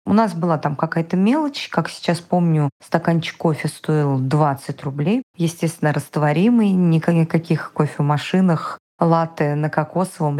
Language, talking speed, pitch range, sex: Russian, 135 wpm, 155-220 Hz, female